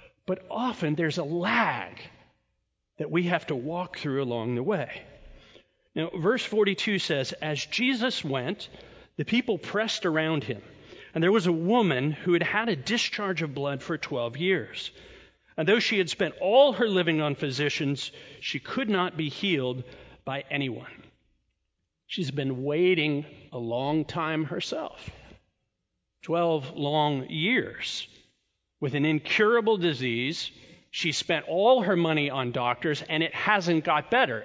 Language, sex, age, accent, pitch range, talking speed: English, male, 40-59, American, 145-185 Hz, 145 wpm